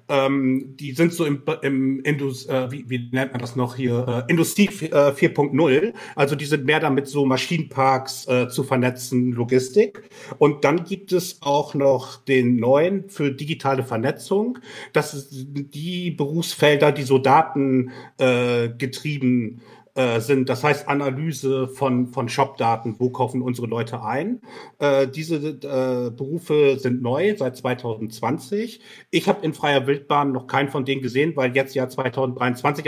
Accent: German